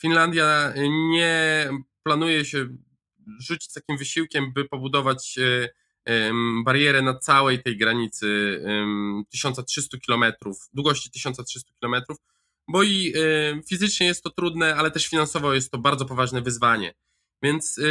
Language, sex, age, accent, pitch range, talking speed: Polish, male, 20-39, native, 130-155 Hz, 115 wpm